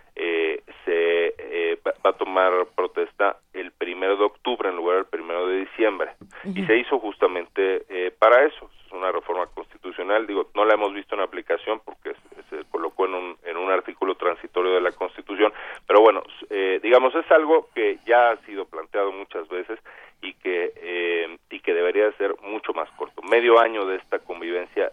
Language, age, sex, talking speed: Spanish, 40-59, male, 180 wpm